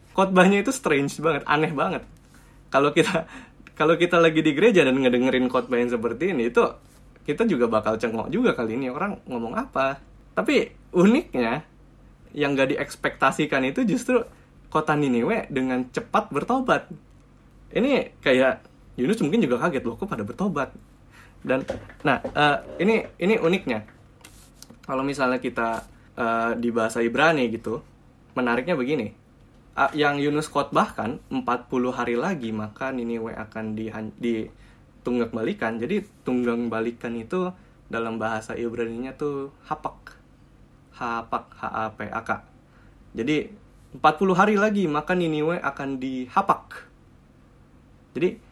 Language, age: Indonesian, 10-29